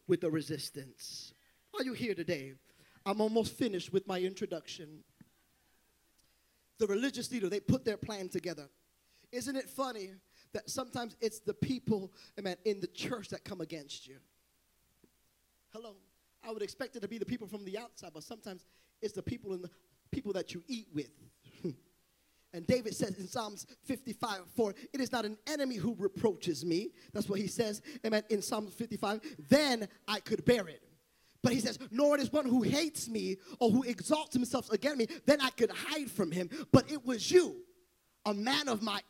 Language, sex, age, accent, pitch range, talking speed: English, male, 20-39, American, 180-245 Hz, 175 wpm